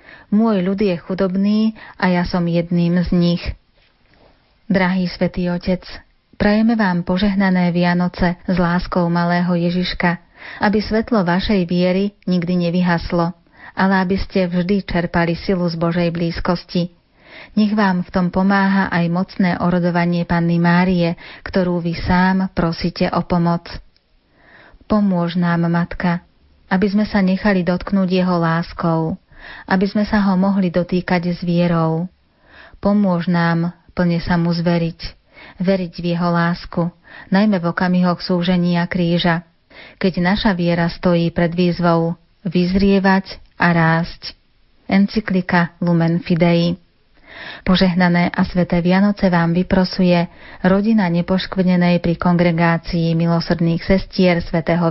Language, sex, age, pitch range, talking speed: Slovak, female, 30-49, 170-190 Hz, 120 wpm